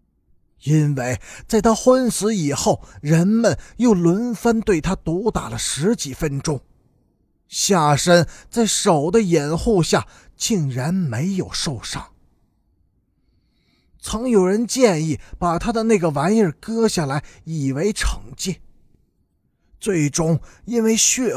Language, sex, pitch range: Chinese, male, 140-215 Hz